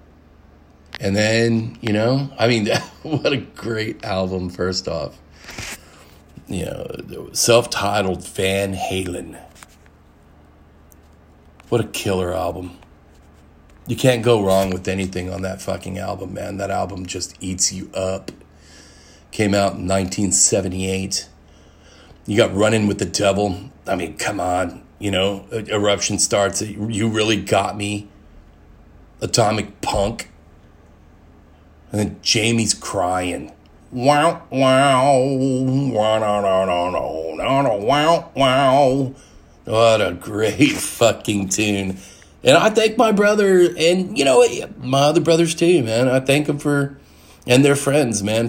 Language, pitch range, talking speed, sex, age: English, 85-115 Hz, 120 wpm, male, 40-59